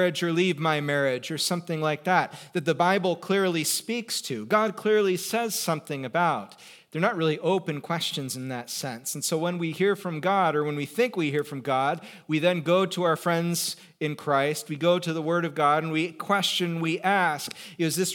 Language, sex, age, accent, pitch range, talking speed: English, male, 40-59, American, 145-180 Hz, 210 wpm